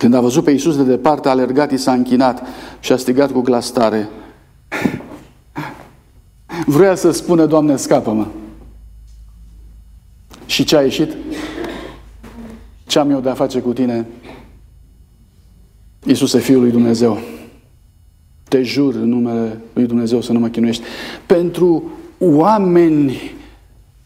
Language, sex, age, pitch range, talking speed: Romanian, male, 50-69, 125-190 Hz, 125 wpm